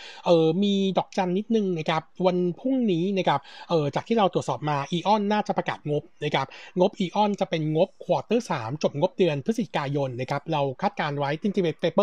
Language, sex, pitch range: Thai, male, 145-185 Hz